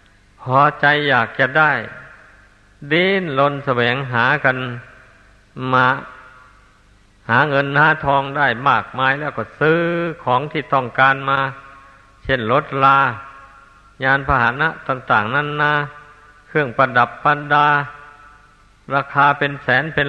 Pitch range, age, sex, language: 125-145 Hz, 60-79, male, Thai